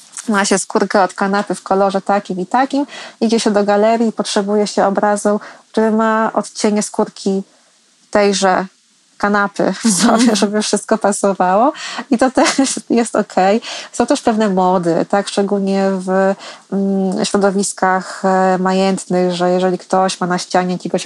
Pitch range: 185-220 Hz